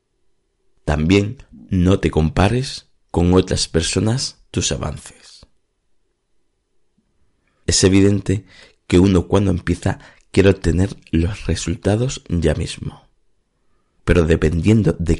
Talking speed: 95 wpm